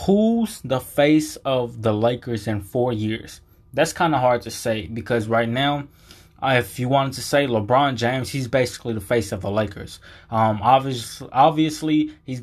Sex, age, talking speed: male, 20-39, 175 wpm